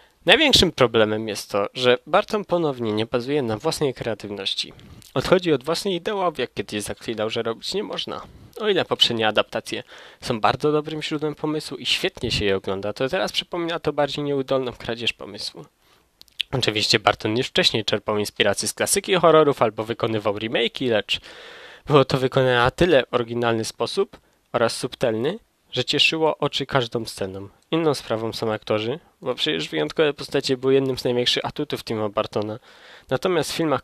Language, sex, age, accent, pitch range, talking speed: Polish, male, 20-39, native, 110-145 Hz, 160 wpm